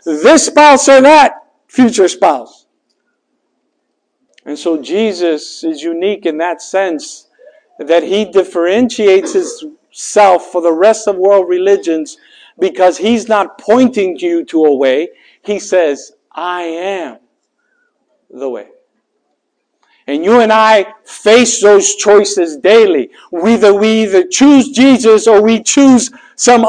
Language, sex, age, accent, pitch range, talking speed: English, male, 60-79, American, 195-270 Hz, 125 wpm